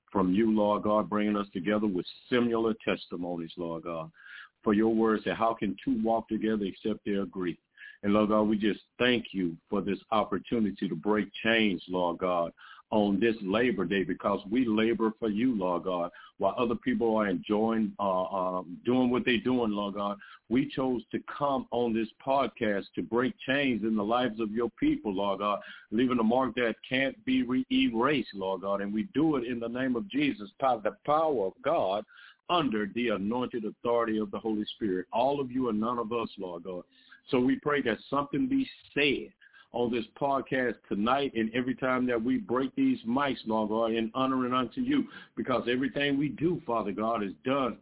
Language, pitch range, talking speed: English, 105-140 Hz, 195 wpm